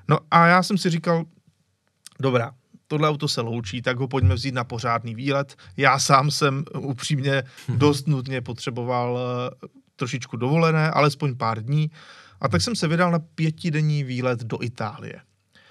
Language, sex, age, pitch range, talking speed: Czech, male, 30-49, 125-155 Hz, 155 wpm